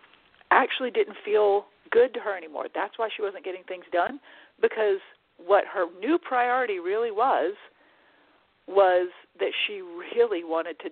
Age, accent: 50-69, American